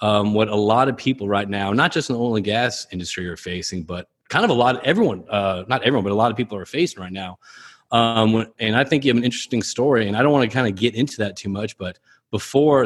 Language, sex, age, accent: English, male, 30-49, American